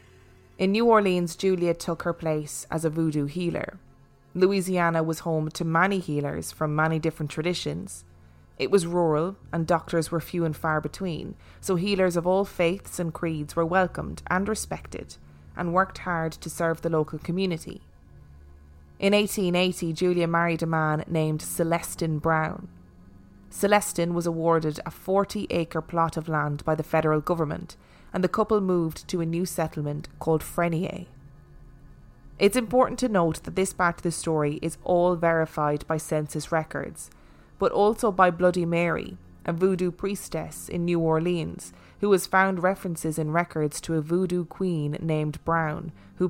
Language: English